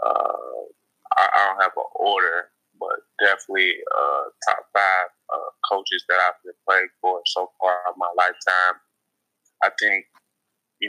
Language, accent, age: English, American, 20-39